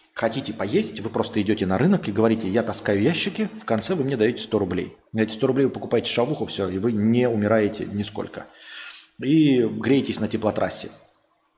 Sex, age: male, 30-49